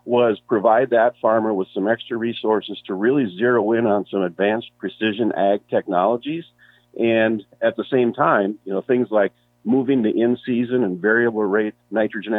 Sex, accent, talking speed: male, American, 165 wpm